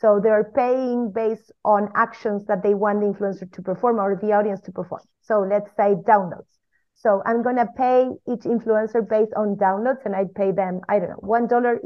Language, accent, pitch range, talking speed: English, Spanish, 200-240 Hz, 190 wpm